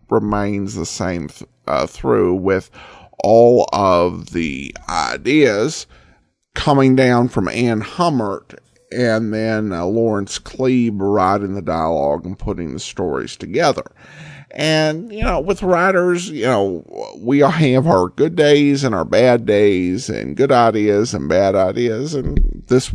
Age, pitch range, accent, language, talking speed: 50-69, 105-140 Hz, American, English, 140 wpm